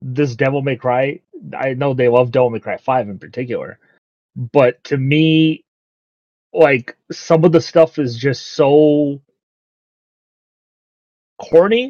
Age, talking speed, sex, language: 30-49, 130 wpm, male, English